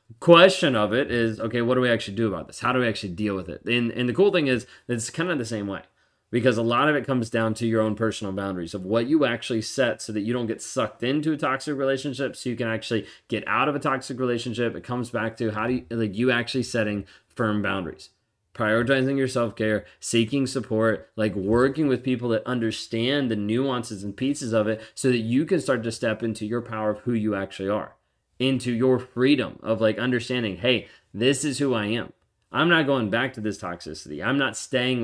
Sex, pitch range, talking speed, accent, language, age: male, 105-125 Hz, 230 wpm, American, English, 20-39